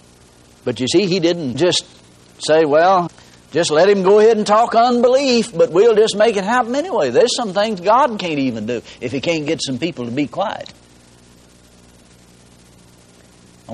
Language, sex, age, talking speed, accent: English, male, 60-79, 175 wpm, American